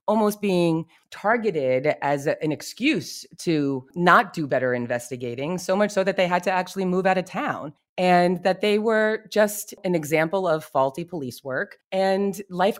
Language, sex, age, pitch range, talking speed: English, female, 30-49, 145-200 Hz, 170 wpm